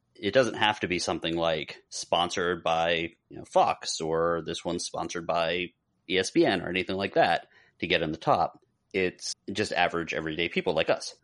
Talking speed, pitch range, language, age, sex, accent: 180 wpm, 85-115 Hz, English, 30-49, male, American